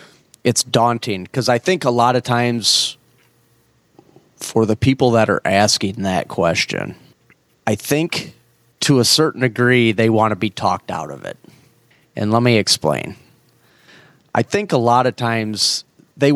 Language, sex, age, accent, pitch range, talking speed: English, male, 30-49, American, 105-125 Hz, 155 wpm